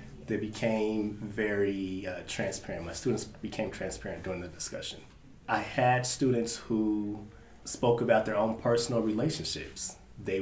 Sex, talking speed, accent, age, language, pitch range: male, 130 wpm, American, 30-49, English, 95-110 Hz